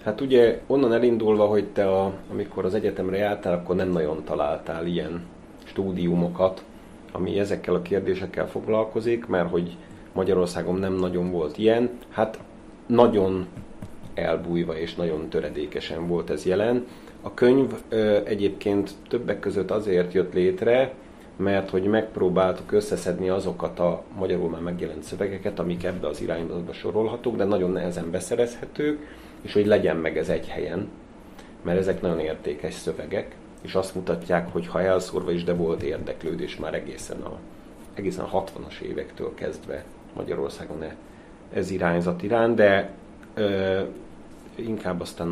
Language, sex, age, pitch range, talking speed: Hungarian, male, 30-49, 90-110 Hz, 135 wpm